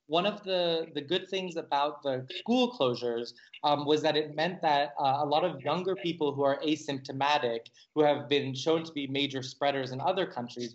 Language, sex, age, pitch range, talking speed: English, male, 20-39, 125-155 Hz, 200 wpm